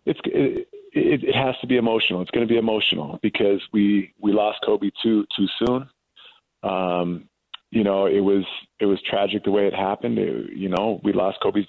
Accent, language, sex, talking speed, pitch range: American, English, male, 195 wpm, 100-125 Hz